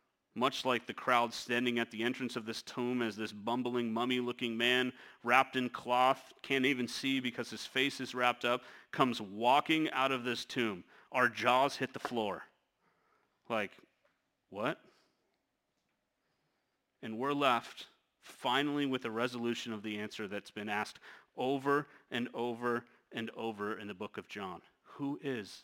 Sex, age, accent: male, 40-59, American